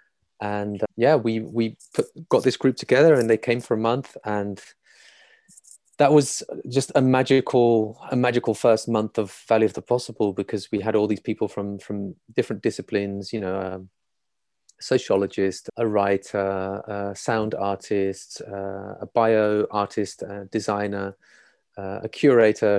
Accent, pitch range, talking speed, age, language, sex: British, 100-110 Hz, 155 wpm, 30-49, English, male